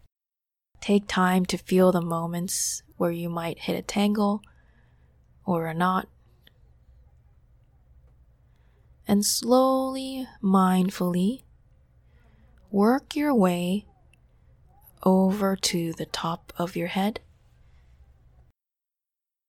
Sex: female